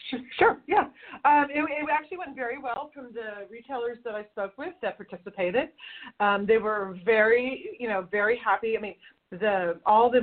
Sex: female